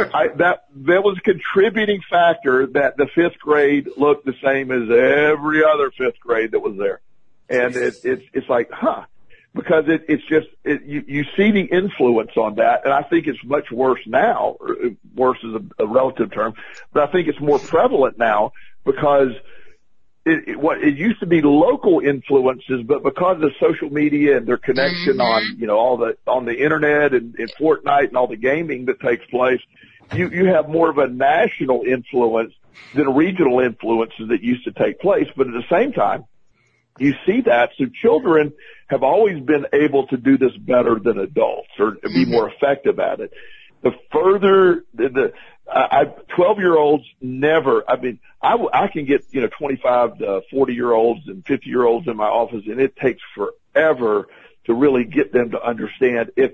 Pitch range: 130-205 Hz